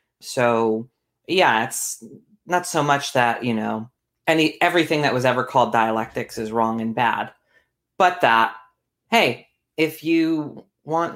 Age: 30-49